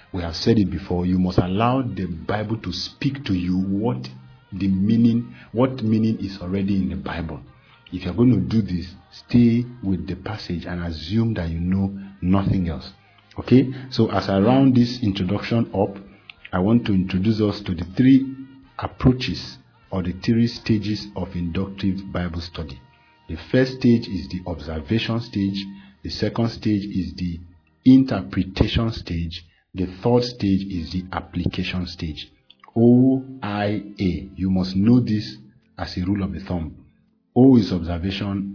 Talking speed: 160 wpm